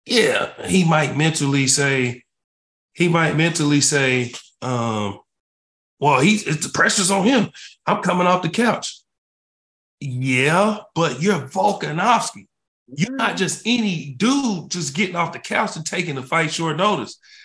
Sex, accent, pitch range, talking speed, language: male, American, 140-180 Hz, 140 wpm, English